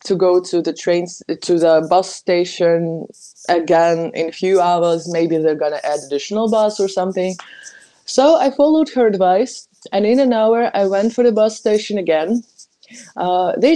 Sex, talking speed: female, 175 wpm